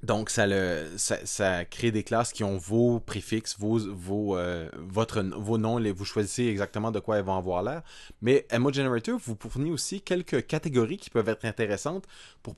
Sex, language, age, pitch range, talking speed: male, French, 20-39, 95-115 Hz, 190 wpm